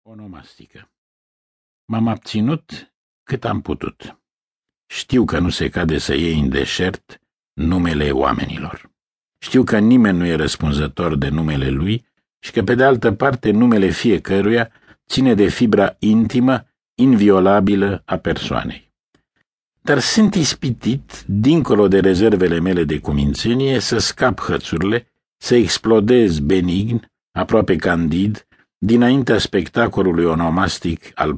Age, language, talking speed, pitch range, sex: 60-79, Romanian, 120 wpm, 85-120 Hz, male